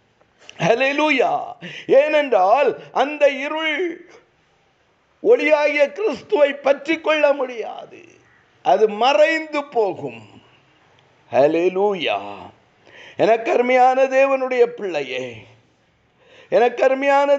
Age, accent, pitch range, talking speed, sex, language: 50-69, native, 240-290 Hz, 50 wpm, male, Tamil